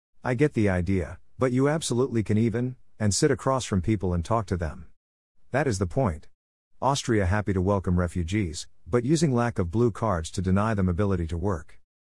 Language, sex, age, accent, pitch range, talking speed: English, male, 50-69, American, 90-115 Hz, 195 wpm